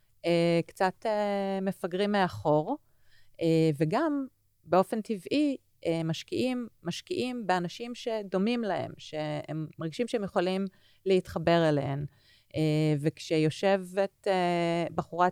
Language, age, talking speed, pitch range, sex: Hebrew, 30-49, 75 wpm, 155-195 Hz, female